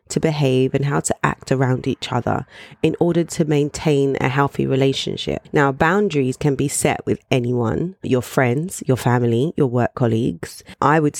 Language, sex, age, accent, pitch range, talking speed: English, female, 20-39, British, 125-150 Hz, 165 wpm